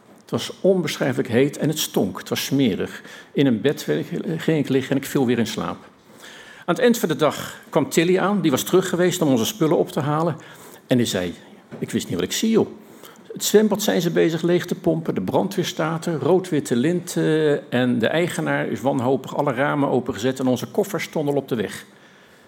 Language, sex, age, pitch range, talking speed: Dutch, male, 50-69, 130-180 Hz, 210 wpm